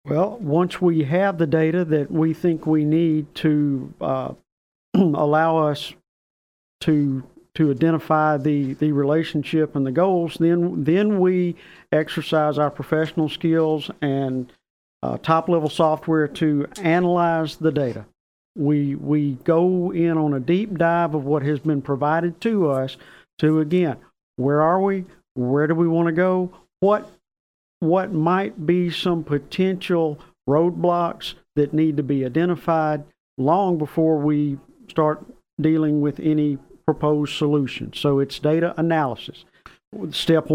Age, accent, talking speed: 50-69, American, 135 wpm